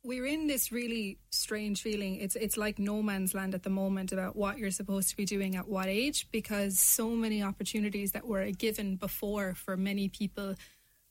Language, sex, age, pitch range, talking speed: English, female, 20-39, 190-210 Hz, 200 wpm